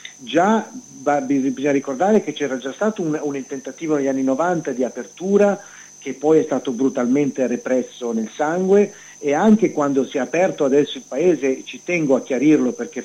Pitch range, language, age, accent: 130-155 Hz, Italian, 40-59, native